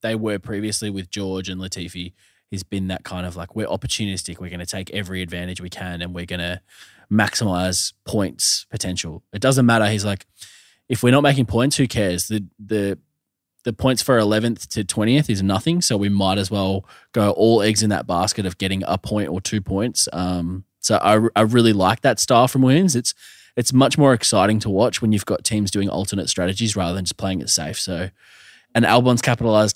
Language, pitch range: English, 95-120 Hz